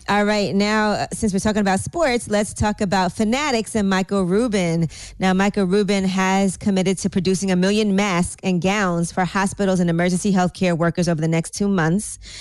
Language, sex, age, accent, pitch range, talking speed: English, female, 20-39, American, 170-195 Hz, 190 wpm